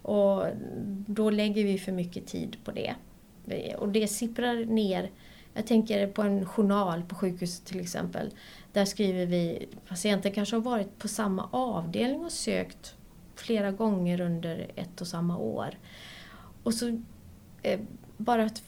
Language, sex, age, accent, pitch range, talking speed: Swedish, female, 30-49, native, 175-215 Hz, 145 wpm